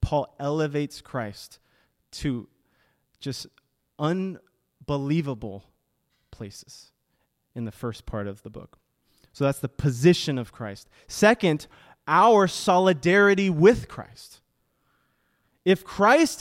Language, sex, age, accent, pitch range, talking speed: English, male, 30-49, American, 135-185 Hz, 100 wpm